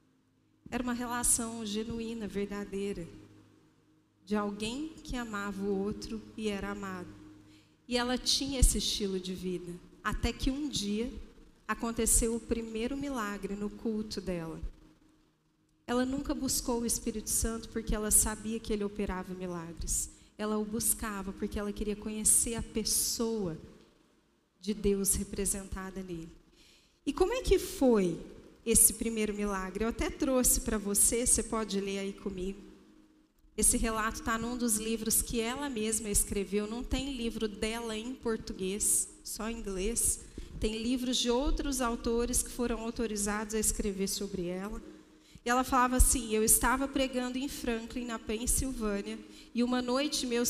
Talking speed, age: 145 wpm, 40-59